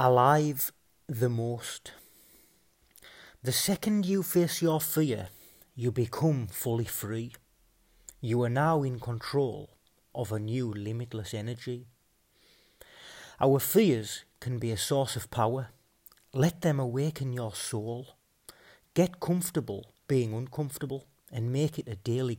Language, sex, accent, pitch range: English, male, British, 115-145 Hz